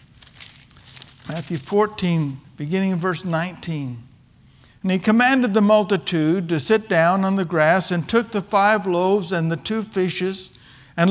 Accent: American